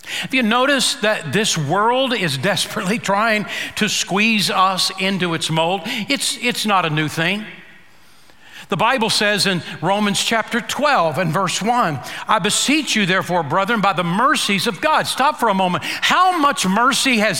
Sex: male